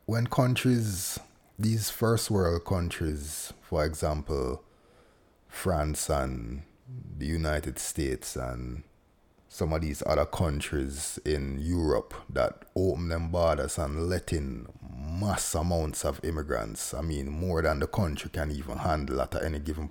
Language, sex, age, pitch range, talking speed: English, male, 30-49, 80-95 Hz, 135 wpm